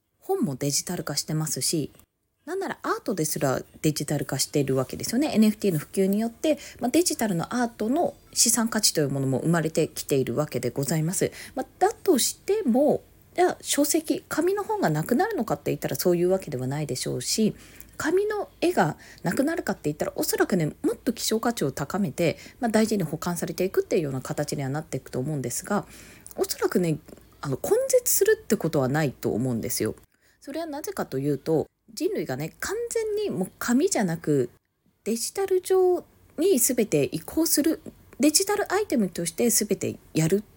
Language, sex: Japanese, female